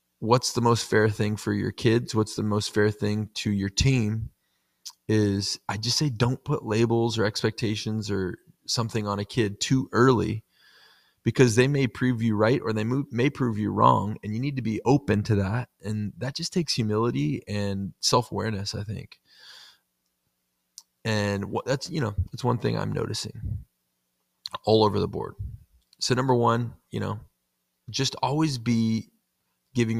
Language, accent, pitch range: English, American, 105-120 Hz